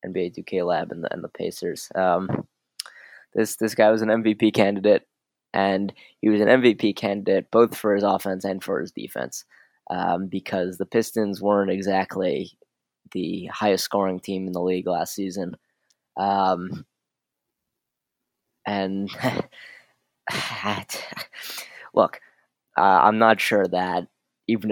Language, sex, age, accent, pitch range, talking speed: English, male, 20-39, American, 90-105 Hz, 130 wpm